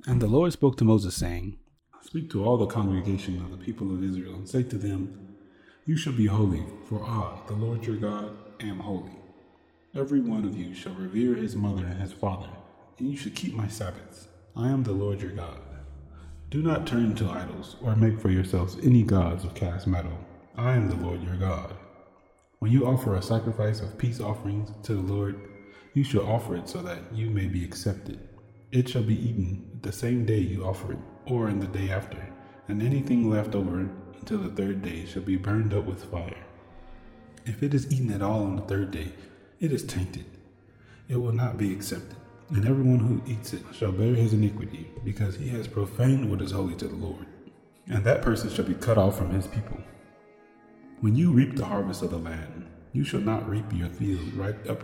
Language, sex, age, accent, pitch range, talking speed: English, male, 30-49, American, 95-115 Hz, 205 wpm